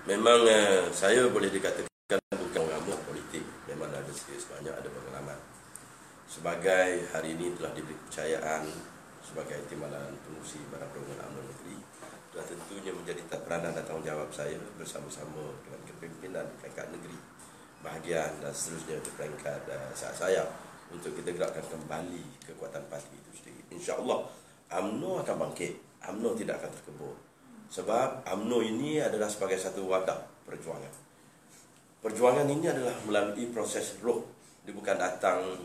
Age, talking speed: 30-49, 130 wpm